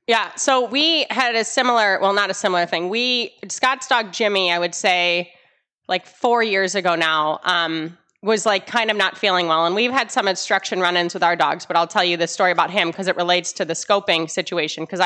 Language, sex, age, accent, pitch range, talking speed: English, female, 20-39, American, 185-235 Hz, 220 wpm